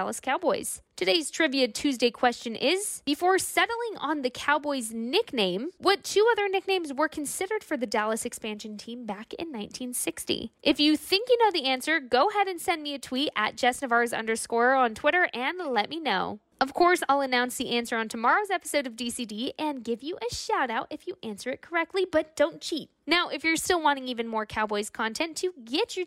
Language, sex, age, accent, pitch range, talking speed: English, female, 10-29, American, 245-355 Hz, 200 wpm